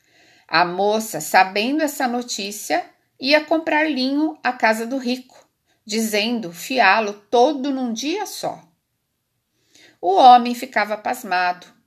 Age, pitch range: 40-59, 180-270 Hz